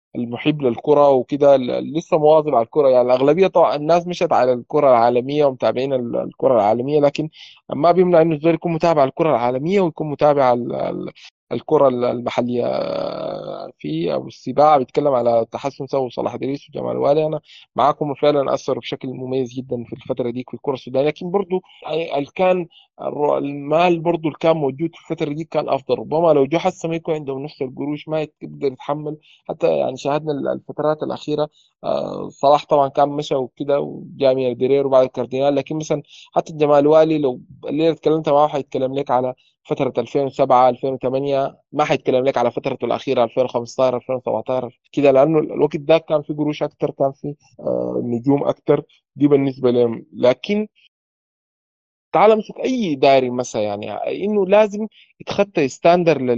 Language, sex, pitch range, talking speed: Arabic, male, 130-160 Hz, 150 wpm